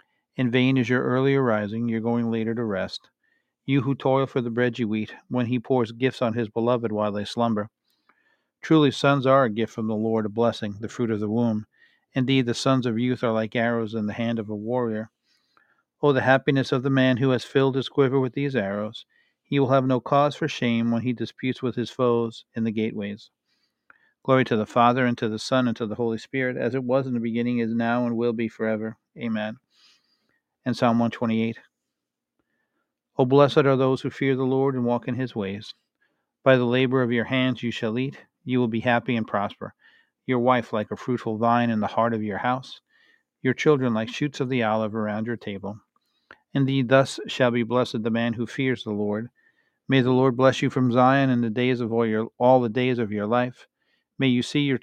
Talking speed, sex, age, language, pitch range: 220 wpm, male, 50-69, English, 115-130 Hz